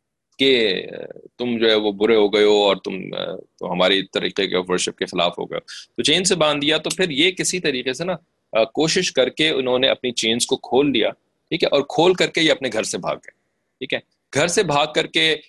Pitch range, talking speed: 115-180 Hz, 215 wpm